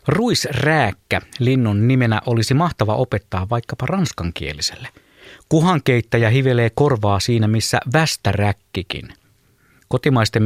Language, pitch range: Finnish, 100-135 Hz